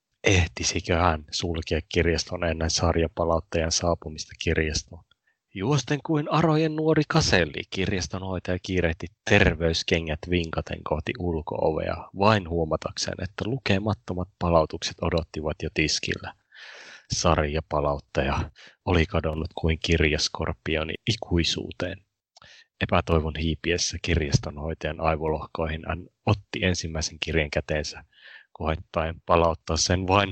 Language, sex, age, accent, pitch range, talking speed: Finnish, male, 30-49, native, 80-95 Hz, 90 wpm